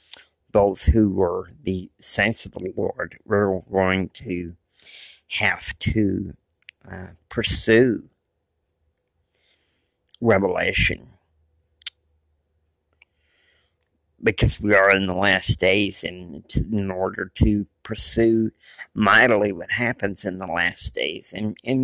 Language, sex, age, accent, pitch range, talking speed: English, male, 50-69, American, 85-115 Hz, 105 wpm